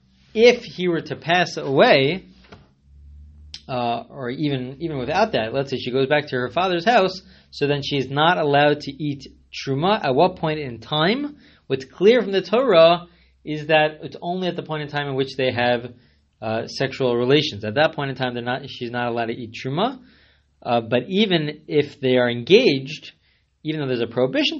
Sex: male